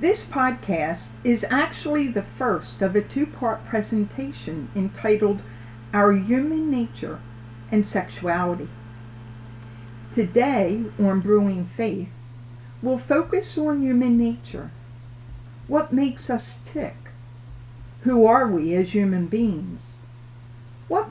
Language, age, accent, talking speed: English, 50-69, American, 100 wpm